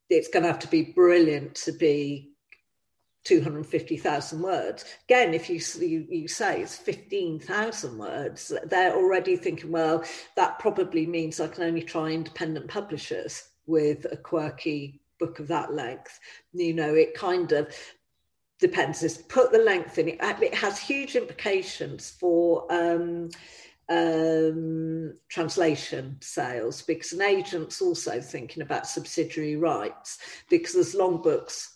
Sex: female